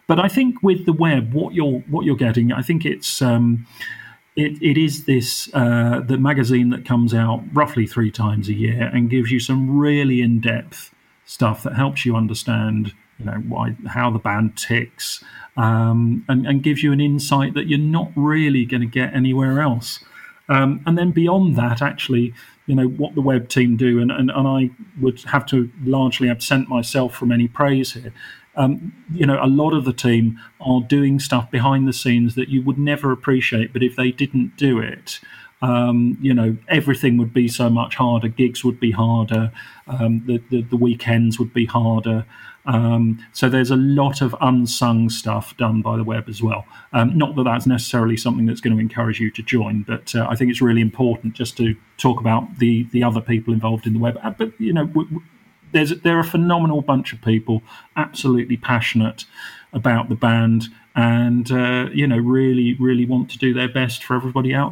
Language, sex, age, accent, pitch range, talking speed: English, male, 40-59, British, 115-135 Hz, 195 wpm